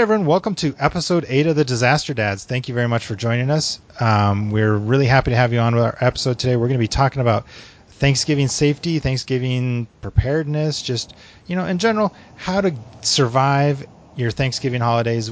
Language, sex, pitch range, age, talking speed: English, male, 105-130 Hz, 30-49, 190 wpm